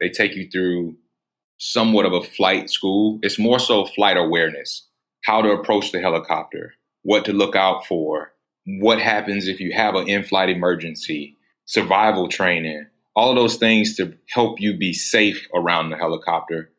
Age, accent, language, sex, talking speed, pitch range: 30-49, American, English, male, 170 wpm, 90-105 Hz